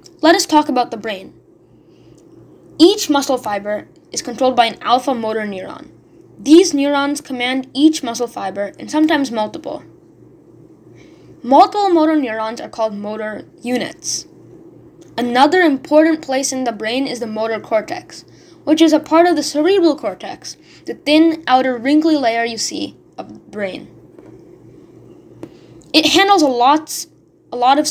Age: 10-29